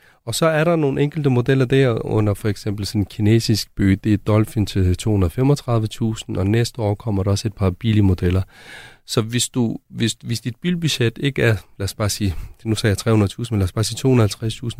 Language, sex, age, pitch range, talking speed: Danish, male, 30-49, 105-130 Hz, 210 wpm